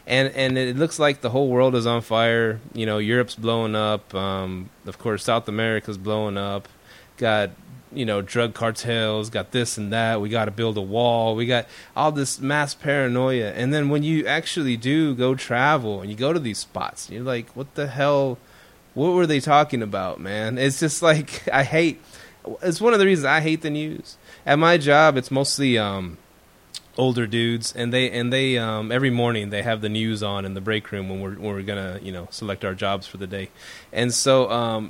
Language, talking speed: English, 210 wpm